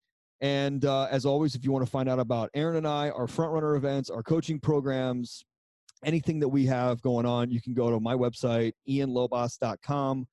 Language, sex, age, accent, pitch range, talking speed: English, male, 30-49, American, 115-135 Hz, 190 wpm